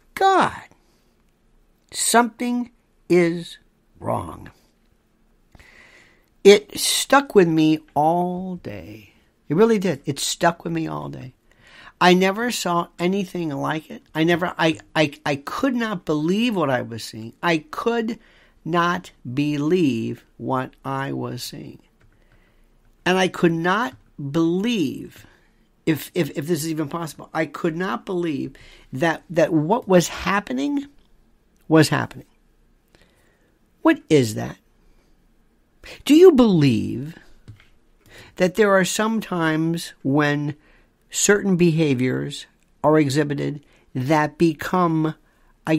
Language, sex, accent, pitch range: English, male, American, 145-190 Hz